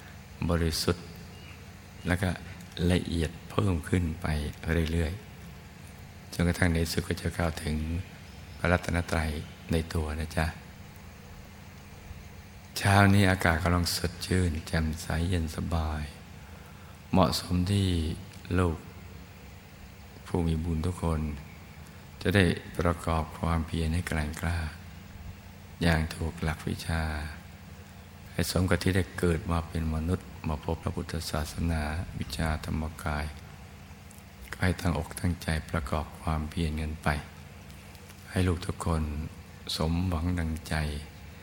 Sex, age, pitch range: male, 60-79, 80-95 Hz